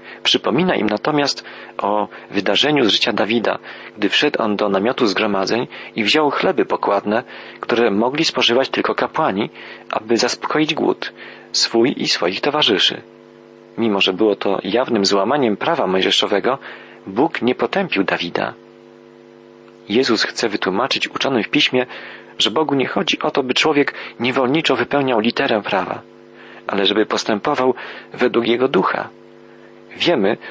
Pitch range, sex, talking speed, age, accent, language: 95-130 Hz, male, 130 wpm, 40-59, native, Polish